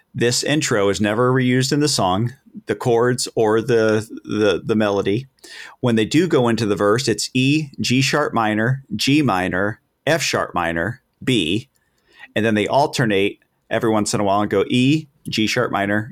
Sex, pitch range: male, 105-135 Hz